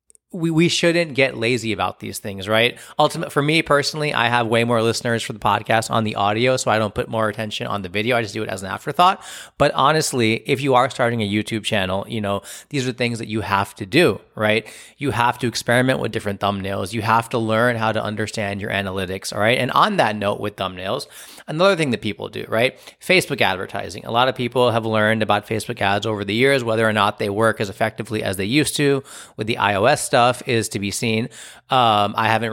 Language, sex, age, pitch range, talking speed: English, male, 30-49, 105-125 Hz, 230 wpm